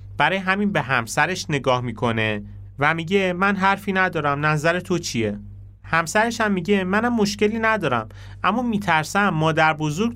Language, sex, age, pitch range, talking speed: Persian, male, 30-49, 105-165 Hz, 140 wpm